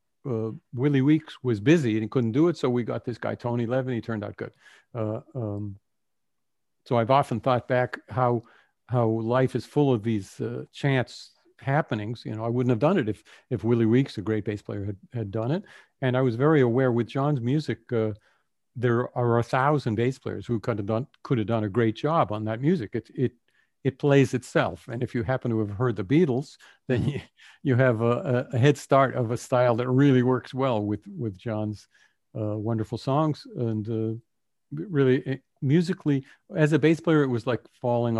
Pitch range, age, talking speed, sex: 115-135 Hz, 50-69, 210 wpm, male